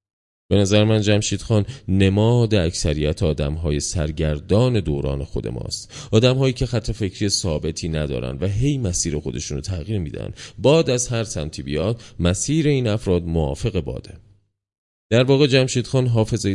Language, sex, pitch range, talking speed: Persian, male, 85-115 Hz, 150 wpm